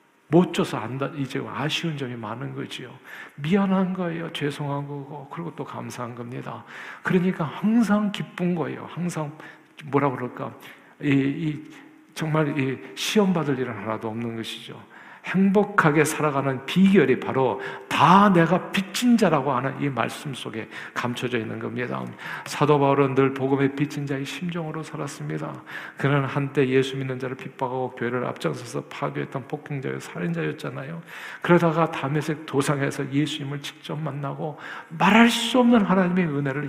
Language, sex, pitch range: Korean, male, 140-170 Hz